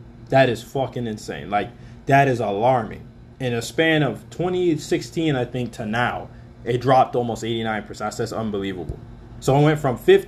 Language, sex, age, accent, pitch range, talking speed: English, male, 20-39, American, 120-150 Hz, 165 wpm